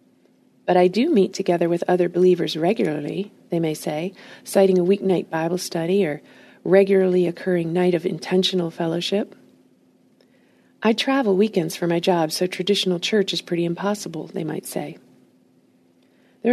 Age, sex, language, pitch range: 40-59, female, English, 175-210 Hz